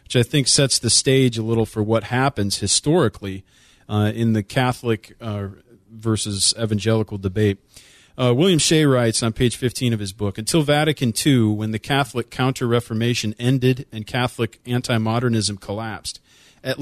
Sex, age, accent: male, 40-59, American